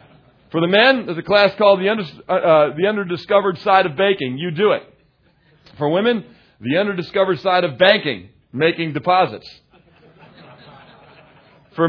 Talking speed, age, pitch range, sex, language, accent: 140 wpm, 40-59, 150-195 Hz, male, English, American